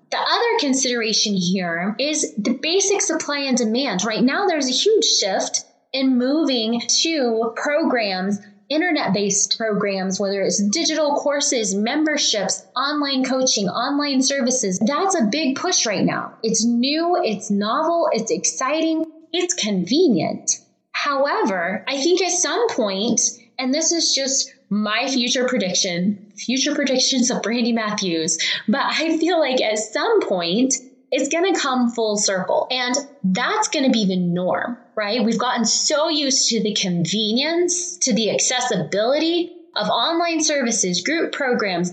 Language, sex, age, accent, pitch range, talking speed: English, female, 20-39, American, 215-310 Hz, 140 wpm